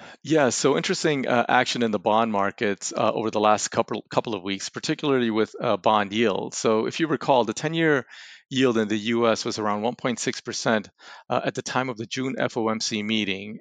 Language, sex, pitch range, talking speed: English, male, 110-135 Hz, 195 wpm